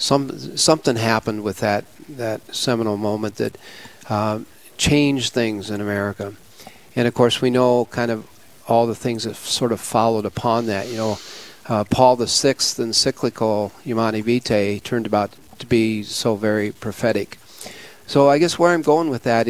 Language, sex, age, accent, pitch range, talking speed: English, male, 50-69, American, 110-130 Hz, 165 wpm